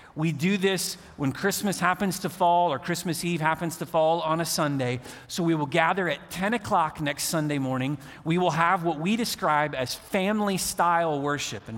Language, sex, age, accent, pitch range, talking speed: English, male, 40-59, American, 140-175 Hz, 190 wpm